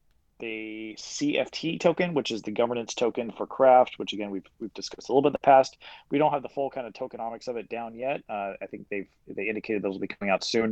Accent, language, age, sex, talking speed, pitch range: American, English, 30-49, male, 250 wpm, 100-125 Hz